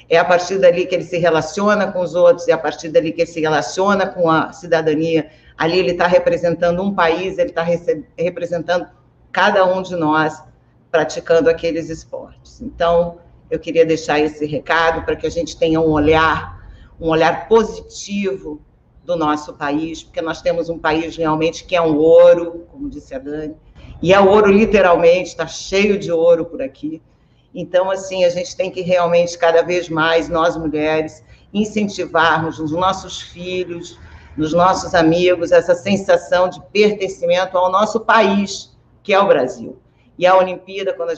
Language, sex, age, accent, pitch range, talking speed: Portuguese, female, 50-69, Brazilian, 160-180 Hz, 170 wpm